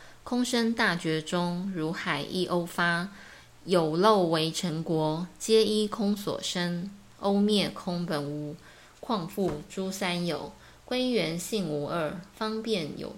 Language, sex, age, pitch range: Chinese, female, 20-39, 160-200 Hz